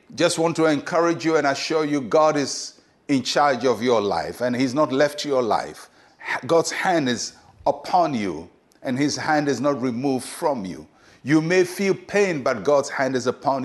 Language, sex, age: English, male, 60-79